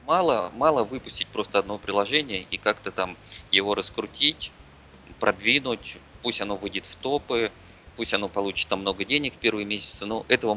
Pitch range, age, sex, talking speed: 90-110 Hz, 20-39, male, 160 wpm